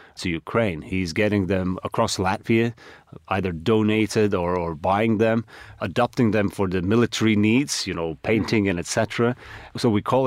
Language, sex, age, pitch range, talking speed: English, male, 30-49, 90-110 Hz, 160 wpm